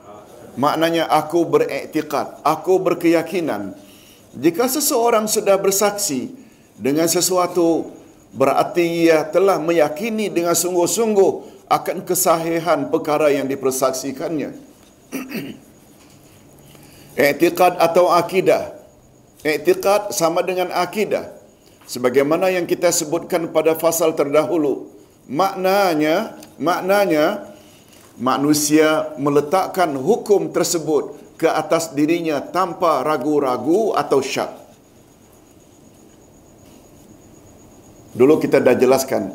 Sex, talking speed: male, 80 wpm